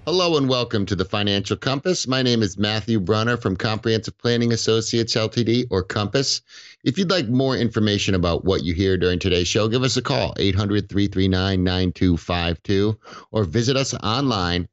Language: English